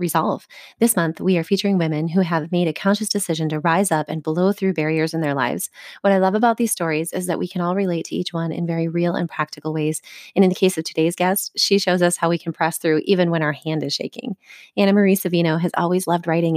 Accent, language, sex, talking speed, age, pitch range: American, English, female, 260 wpm, 30-49, 165-195 Hz